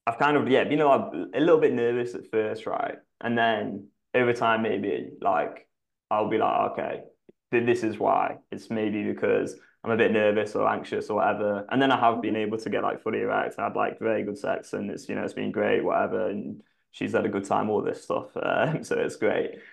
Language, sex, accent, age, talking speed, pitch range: English, male, British, 20-39, 230 wpm, 110-135 Hz